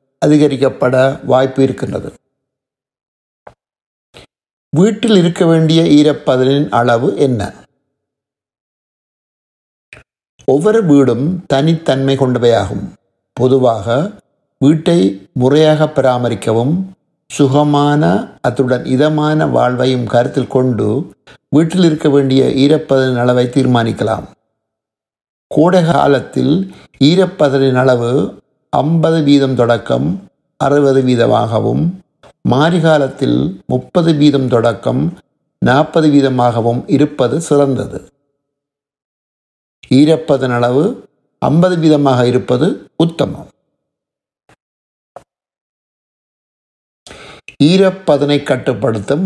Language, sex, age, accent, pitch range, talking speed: Tamil, male, 60-79, native, 125-155 Hz, 60 wpm